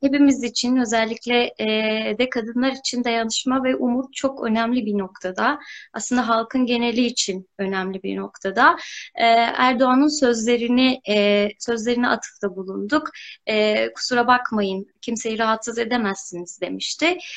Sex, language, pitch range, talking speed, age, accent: female, Turkish, 215-255 Hz, 105 wpm, 20-39, native